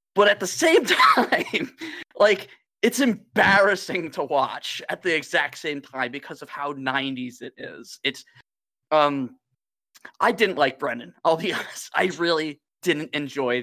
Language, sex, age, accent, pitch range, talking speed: English, male, 20-39, American, 130-170 Hz, 150 wpm